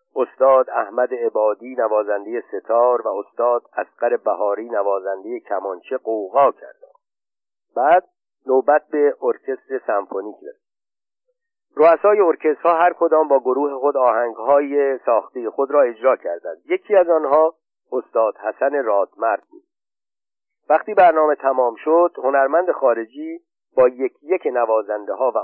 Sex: male